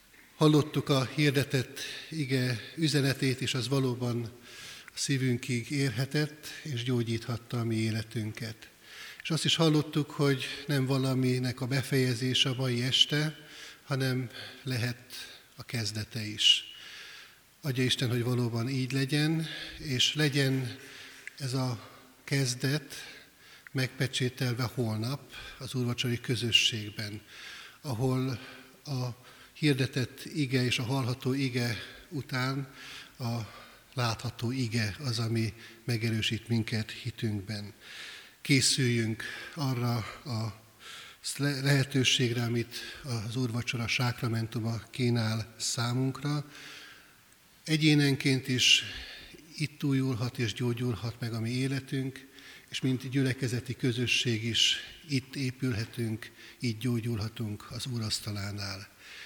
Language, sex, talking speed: Hungarian, male, 100 wpm